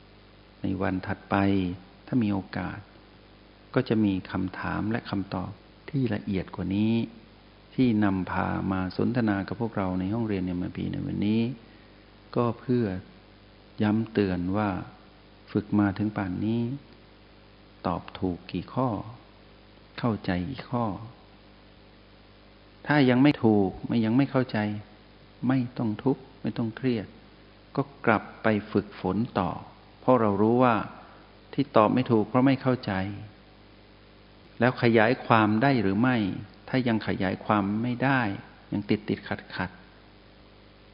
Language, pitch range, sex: Thai, 100-115 Hz, male